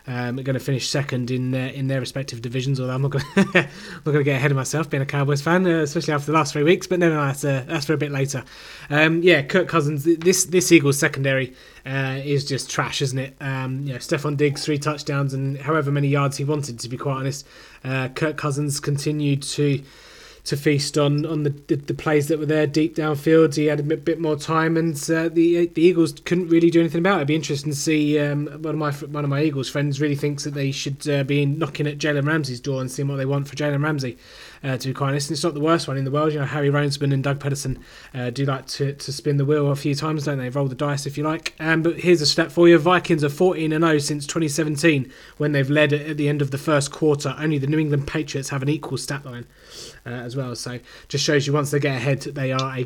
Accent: British